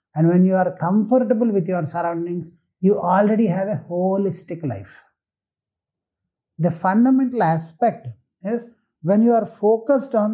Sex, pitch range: male, 155-215 Hz